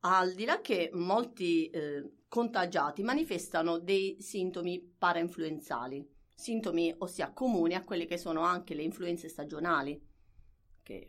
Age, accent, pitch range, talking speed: 30-49, native, 155-195 Hz, 125 wpm